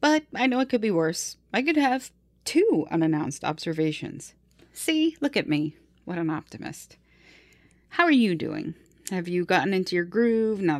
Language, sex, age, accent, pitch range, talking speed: English, female, 40-59, American, 160-205 Hz, 170 wpm